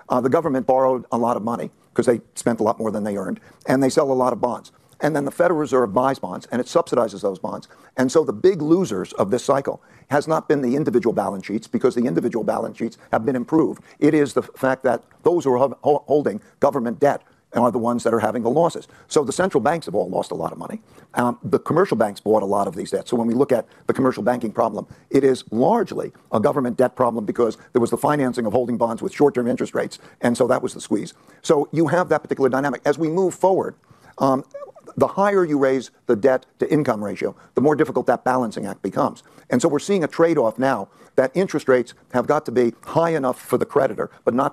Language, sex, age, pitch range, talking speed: English, male, 50-69, 120-145 Hz, 240 wpm